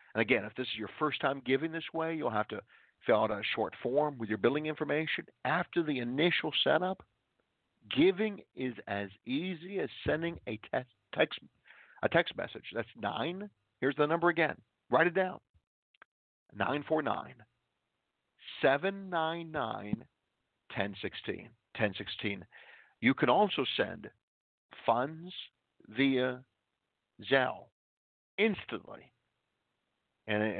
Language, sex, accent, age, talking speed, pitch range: English, male, American, 50-69, 115 wpm, 105-145 Hz